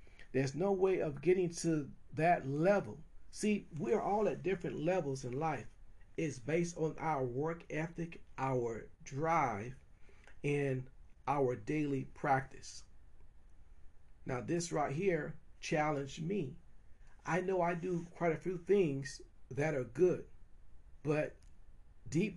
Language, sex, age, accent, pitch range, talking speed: English, male, 50-69, American, 110-170 Hz, 125 wpm